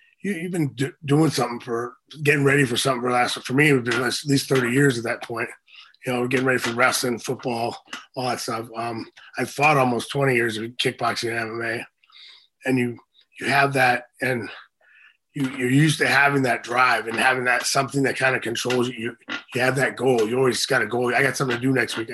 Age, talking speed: 30-49, 235 wpm